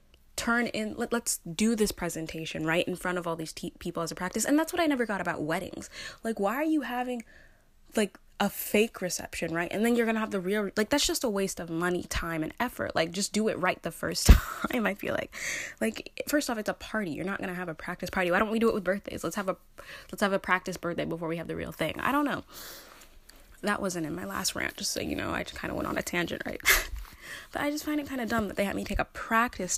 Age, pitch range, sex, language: 10-29, 165-225 Hz, female, English